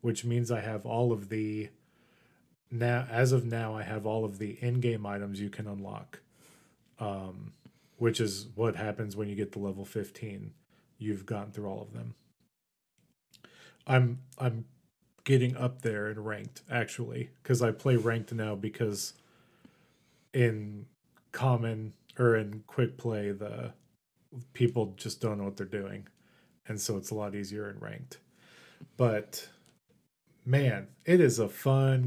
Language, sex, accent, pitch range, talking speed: English, male, American, 105-130 Hz, 150 wpm